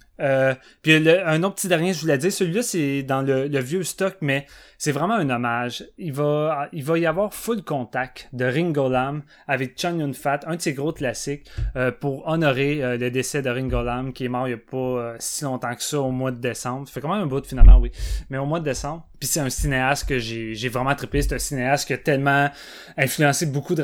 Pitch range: 125-150 Hz